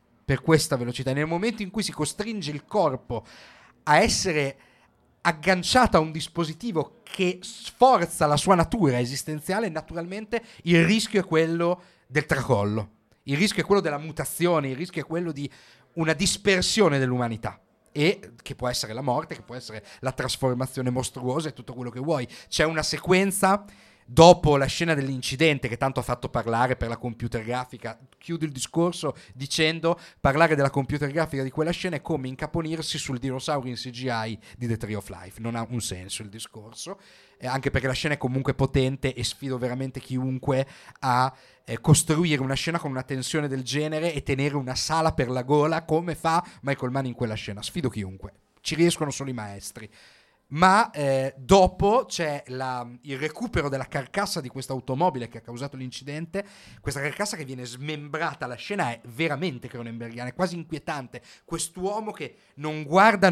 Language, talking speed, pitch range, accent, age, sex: Italian, 170 wpm, 125-165 Hz, native, 40-59, male